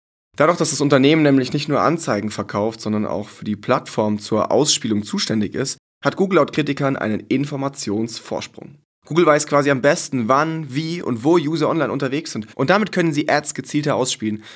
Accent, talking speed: German, 180 wpm